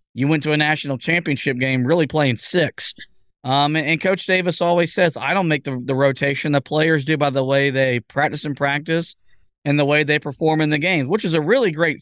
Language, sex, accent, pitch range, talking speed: English, male, American, 140-170 Hz, 225 wpm